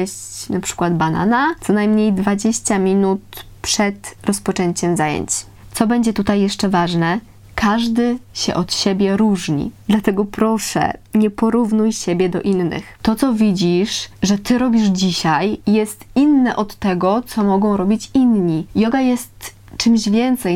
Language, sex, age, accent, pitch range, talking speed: Polish, female, 20-39, native, 185-225 Hz, 135 wpm